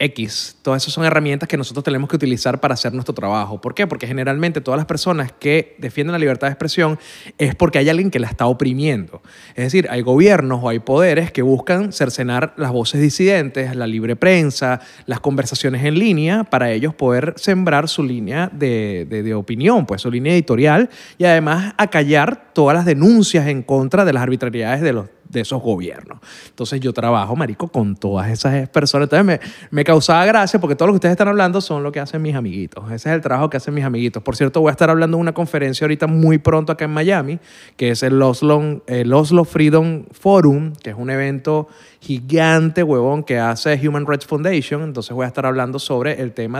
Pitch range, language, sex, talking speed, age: 125-160 Hz, Spanish, male, 205 wpm, 30-49